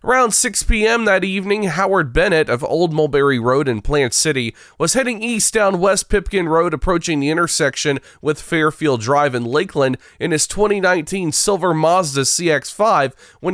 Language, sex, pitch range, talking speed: English, male, 140-185 Hz, 160 wpm